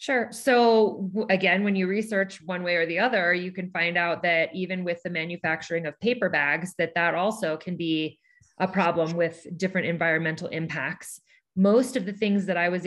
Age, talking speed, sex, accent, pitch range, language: 20-39, 190 wpm, female, American, 170-205 Hz, English